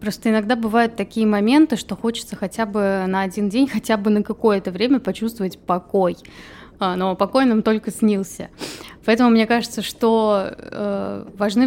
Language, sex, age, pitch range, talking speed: Russian, female, 20-39, 195-225 Hz, 150 wpm